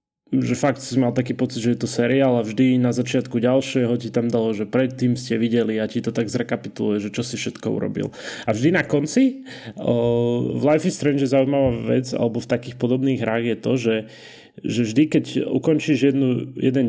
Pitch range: 115-130 Hz